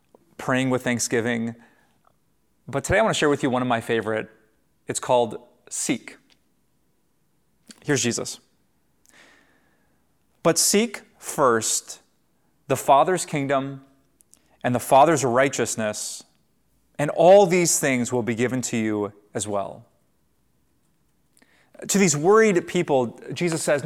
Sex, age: male, 30-49